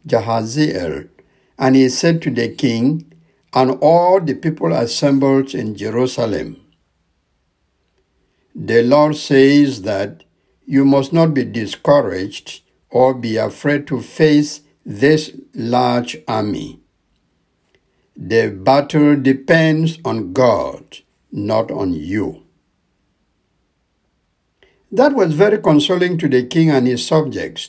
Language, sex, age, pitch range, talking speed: English, male, 60-79, 120-155 Hz, 105 wpm